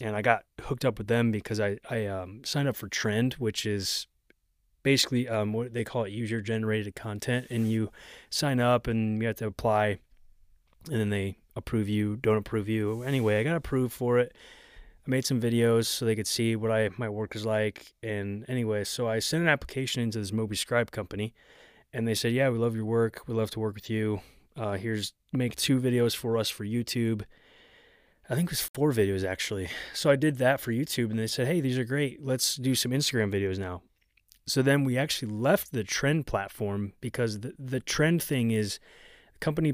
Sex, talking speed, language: male, 210 wpm, English